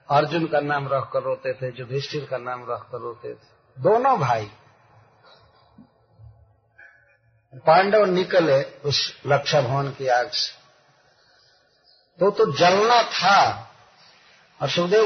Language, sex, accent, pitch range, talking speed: Hindi, male, native, 135-190 Hz, 115 wpm